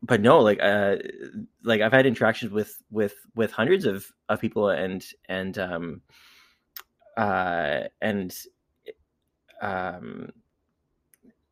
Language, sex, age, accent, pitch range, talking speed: English, male, 20-39, American, 100-135 Hz, 110 wpm